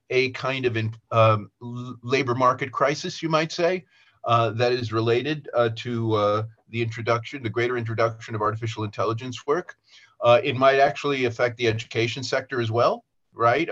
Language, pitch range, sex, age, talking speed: English, 115-170 Hz, male, 40-59, 165 wpm